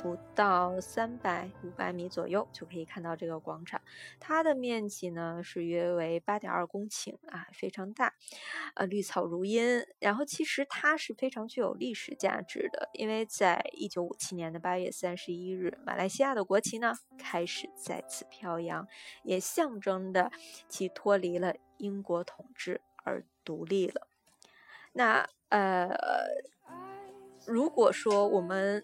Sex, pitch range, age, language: female, 180-260 Hz, 20-39, Chinese